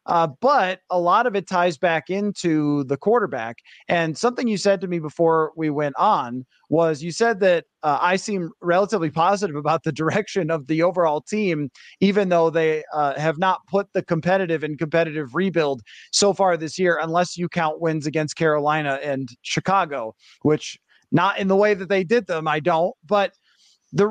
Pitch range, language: 155-200 Hz, English